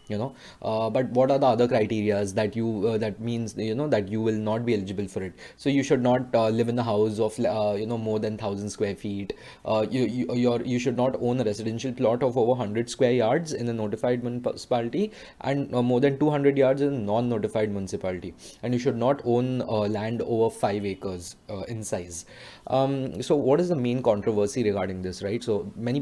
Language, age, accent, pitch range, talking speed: English, 20-39, Indian, 110-130 Hz, 225 wpm